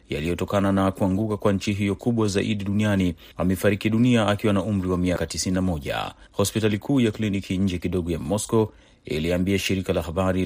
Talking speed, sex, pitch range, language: 165 wpm, male, 90-105 Hz, Swahili